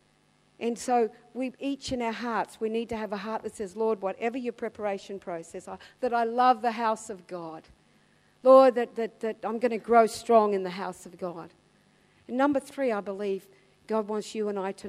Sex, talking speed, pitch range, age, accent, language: female, 215 wpm, 200-245 Hz, 50-69, Australian, English